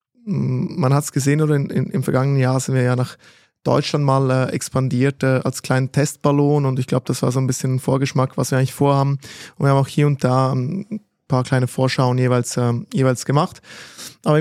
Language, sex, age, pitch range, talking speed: German, male, 20-39, 125-145 Hz, 220 wpm